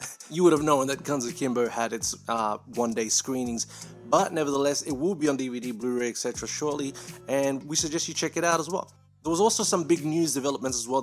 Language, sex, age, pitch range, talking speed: English, male, 30-49, 125-165 Hz, 225 wpm